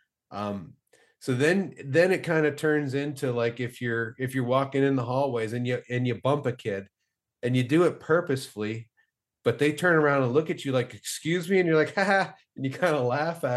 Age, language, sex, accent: 30-49, English, male, American